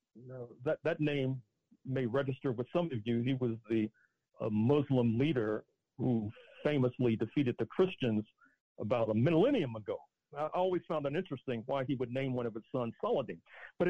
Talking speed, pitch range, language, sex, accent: 175 wpm, 125-165 Hz, English, male, American